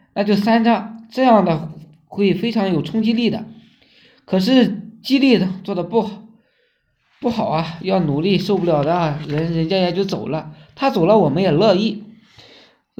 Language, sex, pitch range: Chinese, male, 175-225 Hz